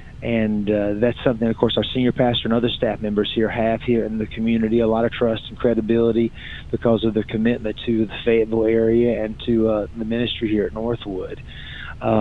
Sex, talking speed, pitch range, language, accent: male, 200 wpm, 110-125 Hz, English, American